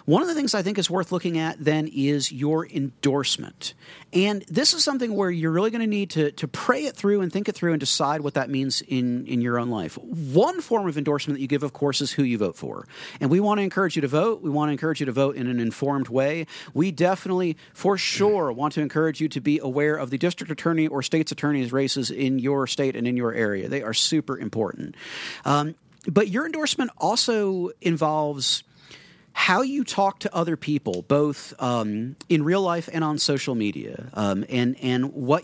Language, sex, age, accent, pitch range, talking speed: English, male, 40-59, American, 135-190 Hz, 220 wpm